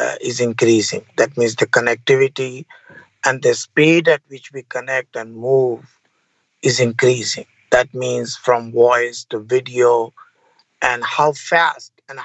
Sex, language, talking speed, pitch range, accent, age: male, English, 130 wpm, 135-195 Hz, Indian, 50-69